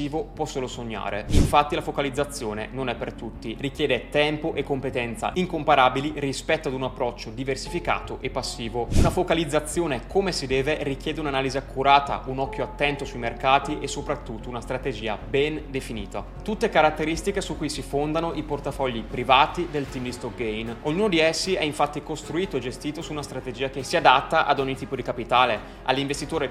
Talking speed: 170 wpm